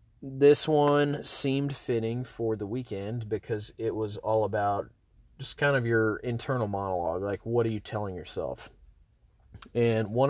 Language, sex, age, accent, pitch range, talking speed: English, male, 30-49, American, 105-120 Hz, 150 wpm